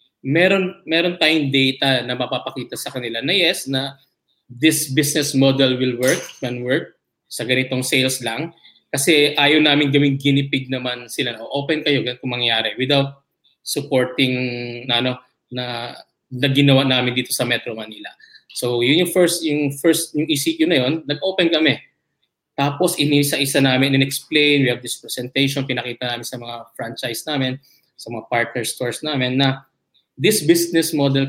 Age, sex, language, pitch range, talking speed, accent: 20-39, male, English, 125-150 Hz, 160 wpm, Filipino